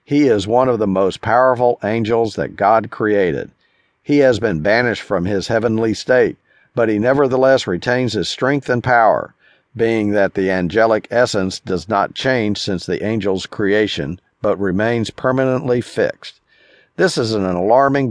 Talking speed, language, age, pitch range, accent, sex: 155 wpm, English, 50-69, 105-130 Hz, American, male